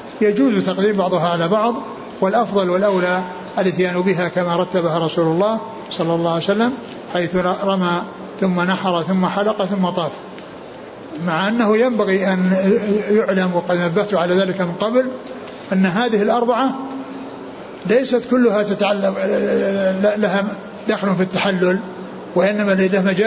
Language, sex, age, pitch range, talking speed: Arabic, male, 60-79, 180-220 Hz, 125 wpm